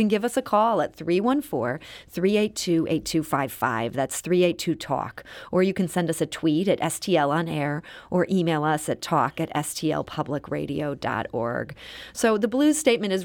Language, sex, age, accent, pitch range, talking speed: English, female, 30-49, American, 150-195 Hz, 145 wpm